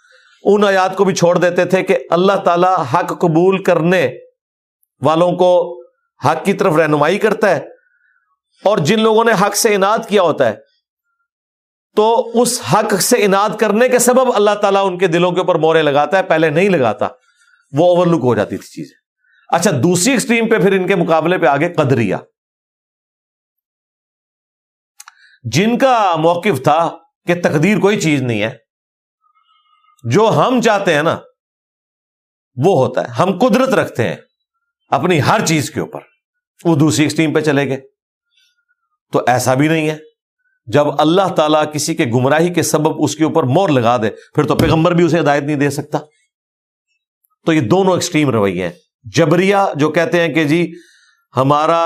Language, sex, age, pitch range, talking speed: Urdu, male, 50-69, 155-220 Hz, 165 wpm